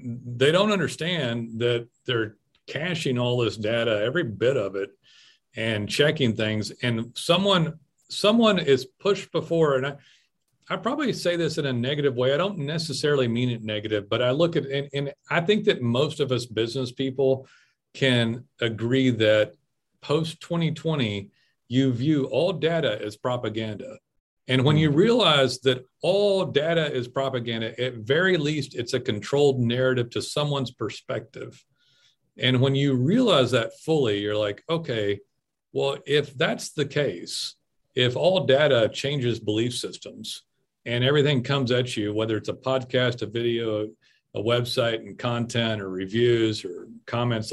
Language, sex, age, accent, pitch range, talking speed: English, male, 40-59, American, 115-150 Hz, 155 wpm